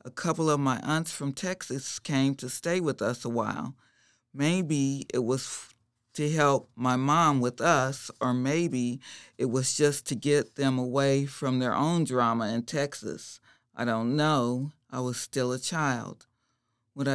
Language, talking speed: English, 165 wpm